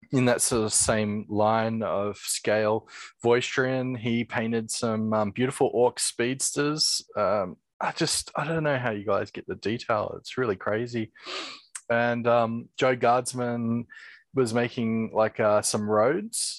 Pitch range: 110-130 Hz